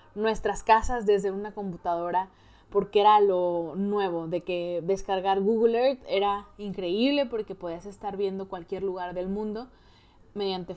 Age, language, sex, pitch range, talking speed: 20-39, Spanish, female, 185-210 Hz, 140 wpm